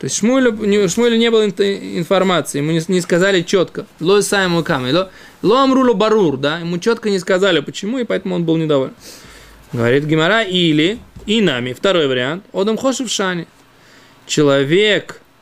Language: Russian